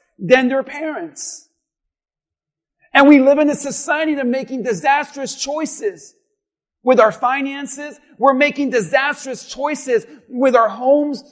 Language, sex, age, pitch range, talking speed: English, male, 40-59, 250-305 Hz, 120 wpm